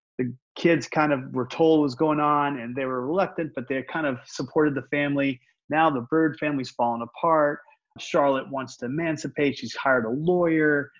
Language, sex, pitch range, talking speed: English, male, 125-150 Hz, 190 wpm